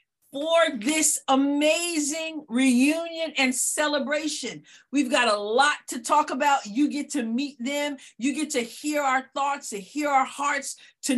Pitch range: 245-295 Hz